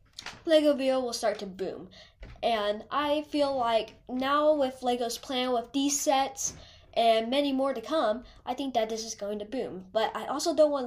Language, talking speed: English, 195 wpm